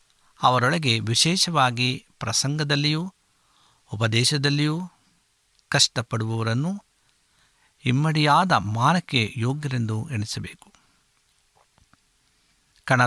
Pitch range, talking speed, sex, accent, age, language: 115-145 Hz, 45 wpm, male, native, 60-79, Kannada